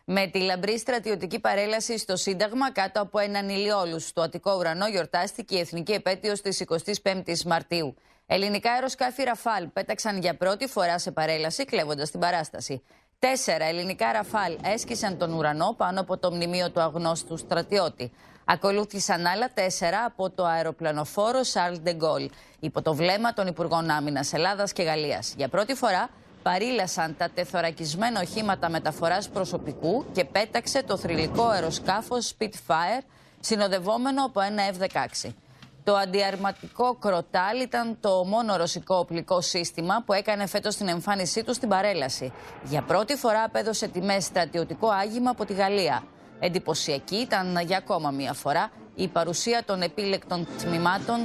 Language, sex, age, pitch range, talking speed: English, female, 20-39, 165-205 Hz, 140 wpm